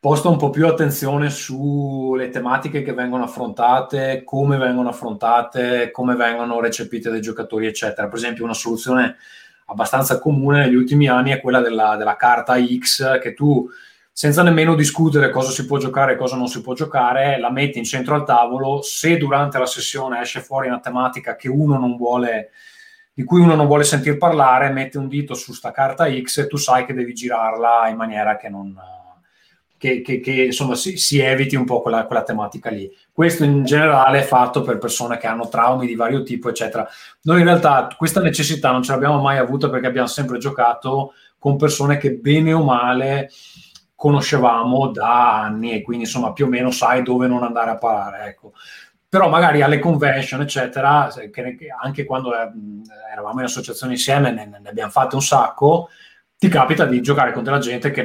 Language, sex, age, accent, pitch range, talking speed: Italian, male, 20-39, native, 120-145 Hz, 185 wpm